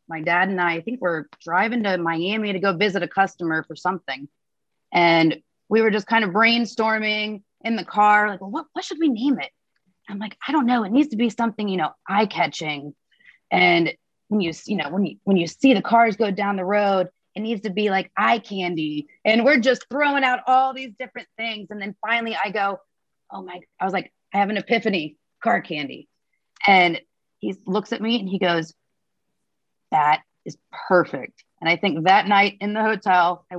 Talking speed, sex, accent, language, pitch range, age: 210 wpm, female, American, English, 170-210 Hz, 30-49